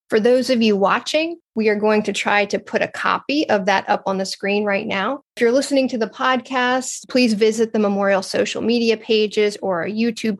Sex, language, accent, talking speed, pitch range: female, English, American, 220 wpm, 200-230 Hz